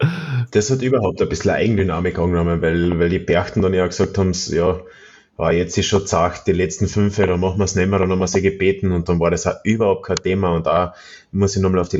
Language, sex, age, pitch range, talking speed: German, male, 30-49, 85-95 Hz, 255 wpm